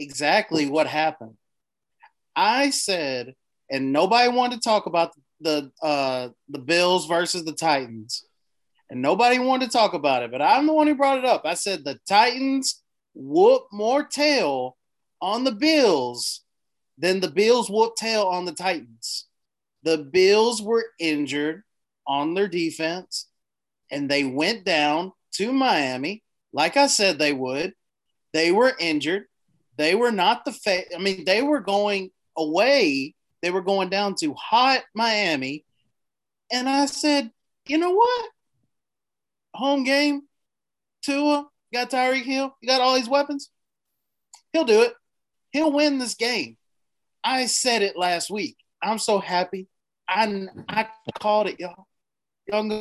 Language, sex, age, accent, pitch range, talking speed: English, male, 30-49, American, 160-260 Hz, 150 wpm